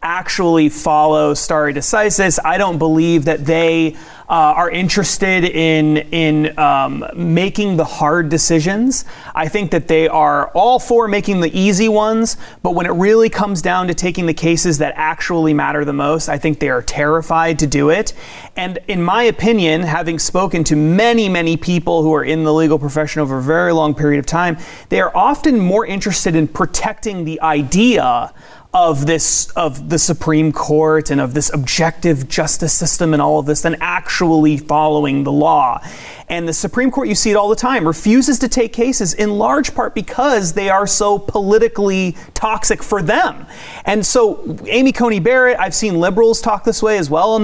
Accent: American